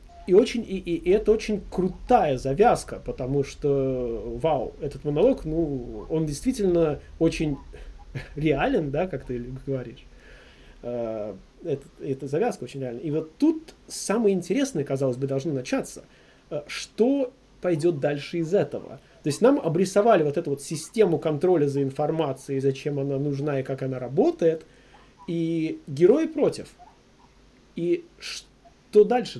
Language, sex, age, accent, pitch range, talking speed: Russian, male, 30-49, native, 140-195 Hz, 135 wpm